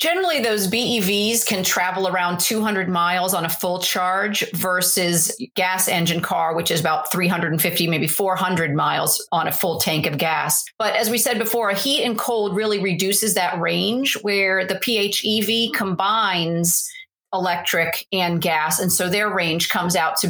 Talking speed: 165 wpm